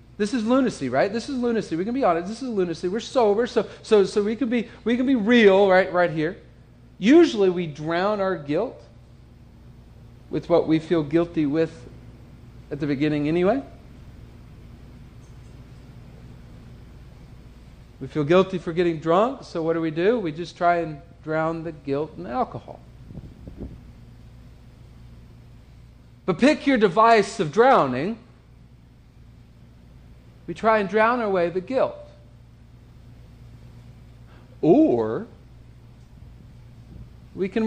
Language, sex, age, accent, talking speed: English, male, 40-59, American, 125 wpm